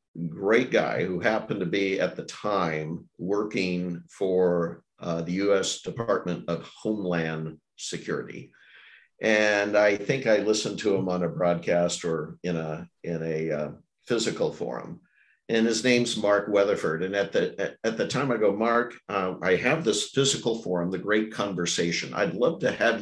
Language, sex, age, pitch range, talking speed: English, male, 50-69, 85-115 Hz, 165 wpm